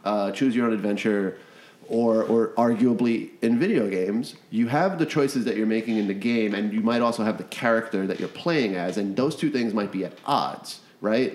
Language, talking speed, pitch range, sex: English, 215 wpm, 100-125 Hz, male